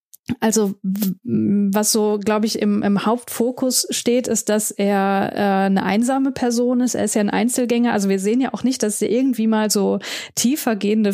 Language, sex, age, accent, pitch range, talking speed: German, female, 20-39, German, 210-240 Hz, 185 wpm